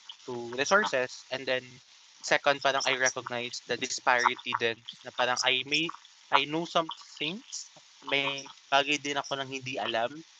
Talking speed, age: 145 wpm, 20-39